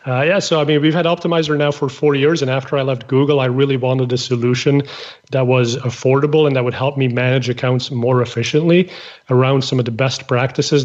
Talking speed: 220 wpm